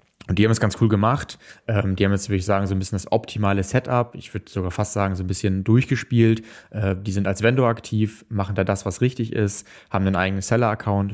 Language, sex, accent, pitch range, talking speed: German, male, German, 95-110 Hz, 240 wpm